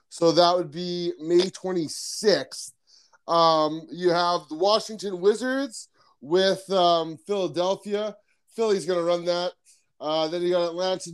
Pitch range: 160-190 Hz